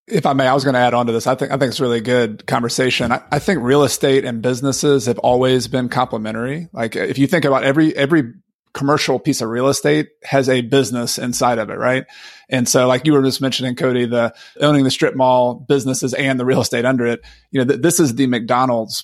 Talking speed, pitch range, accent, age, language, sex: 245 wpm, 120-135 Hz, American, 30-49, English, male